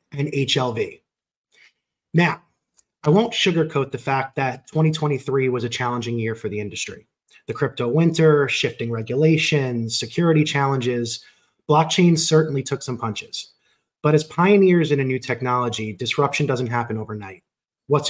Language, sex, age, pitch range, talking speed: English, male, 30-49, 120-155 Hz, 135 wpm